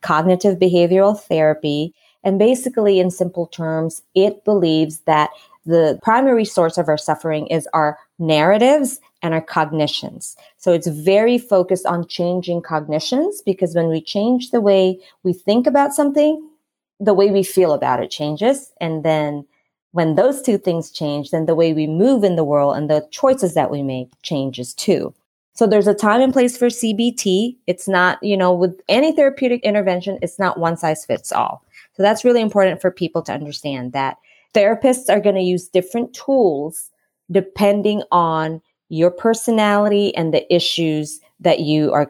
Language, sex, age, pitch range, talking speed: English, female, 30-49, 155-210 Hz, 170 wpm